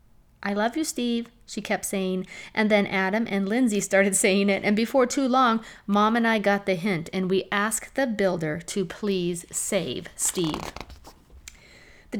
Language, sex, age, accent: English, female, 40-59, American